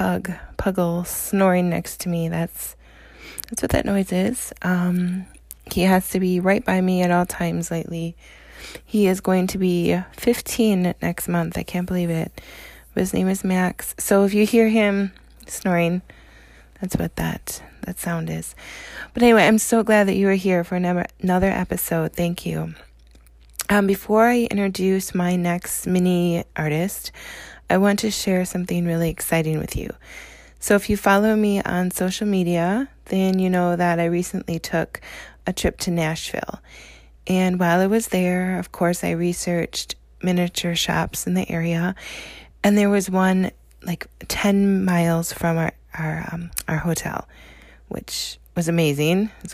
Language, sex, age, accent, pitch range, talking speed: English, female, 20-39, American, 165-190 Hz, 165 wpm